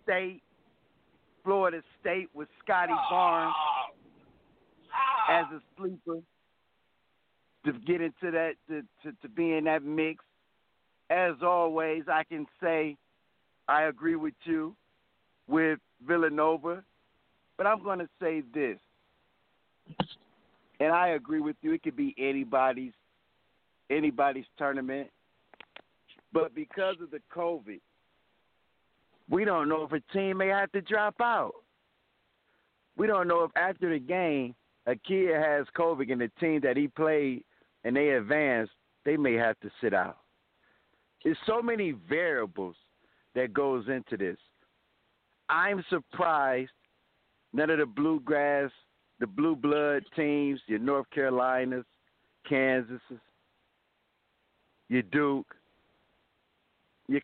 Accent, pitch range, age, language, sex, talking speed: American, 135-185 Hz, 50-69, English, male, 120 wpm